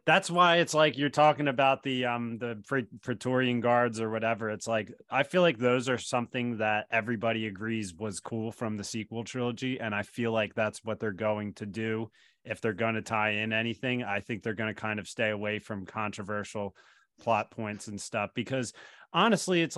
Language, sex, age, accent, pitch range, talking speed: English, male, 30-49, American, 110-130 Hz, 200 wpm